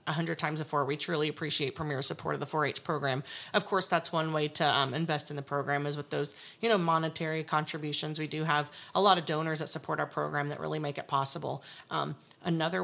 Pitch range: 145-175 Hz